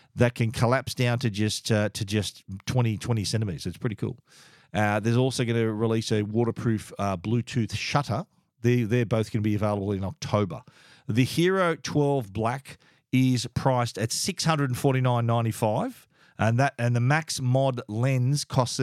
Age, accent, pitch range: 40-59, Australian, 110-130 Hz